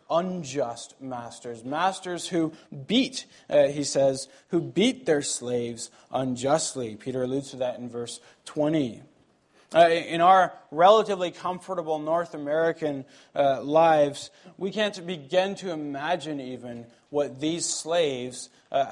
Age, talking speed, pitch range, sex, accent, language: 20-39, 125 wpm, 135-195 Hz, male, American, English